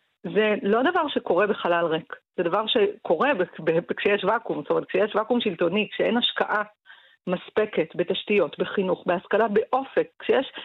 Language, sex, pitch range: Hebrew, female, 195-250 Hz